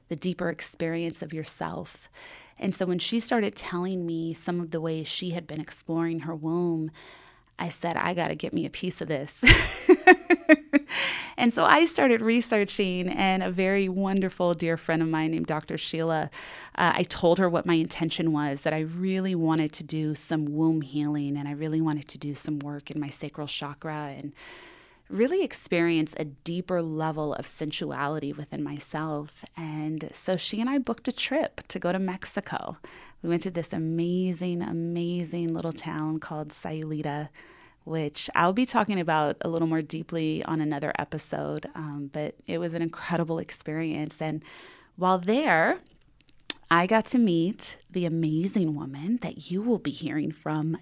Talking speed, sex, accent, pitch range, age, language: 170 wpm, female, American, 155-185 Hz, 30-49, English